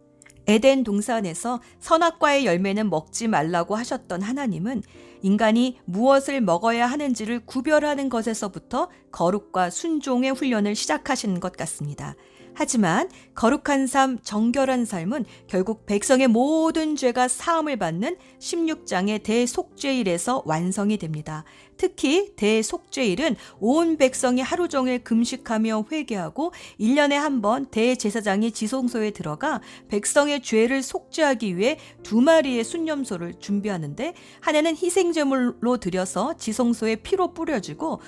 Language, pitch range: Korean, 205-285 Hz